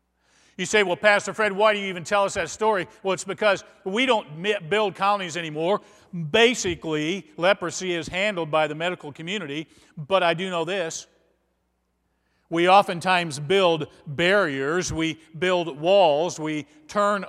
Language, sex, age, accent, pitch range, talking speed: English, male, 50-69, American, 130-180 Hz, 150 wpm